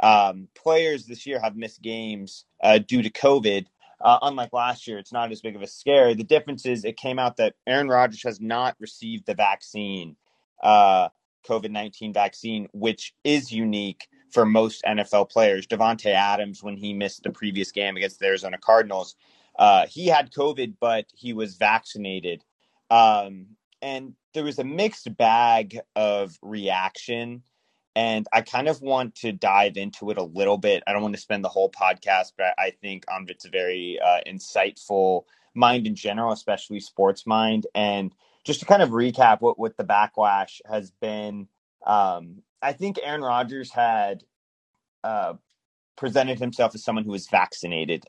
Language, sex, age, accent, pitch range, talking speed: English, male, 30-49, American, 100-120 Hz, 170 wpm